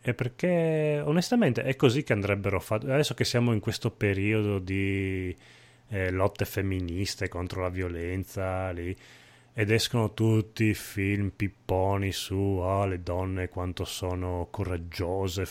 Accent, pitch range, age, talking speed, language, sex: native, 95-110 Hz, 30-49, 135 wpm, Italian, male